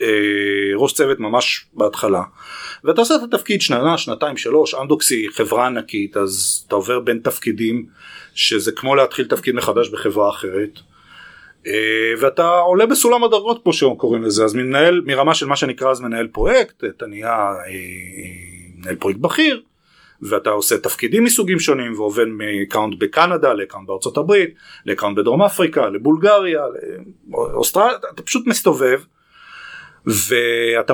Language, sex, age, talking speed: Hebrew, male, 30-49, 130 wpm